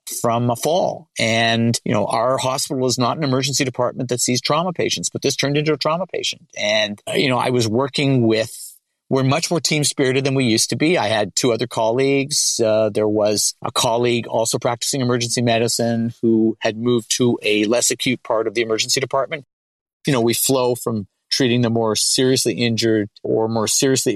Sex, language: male, English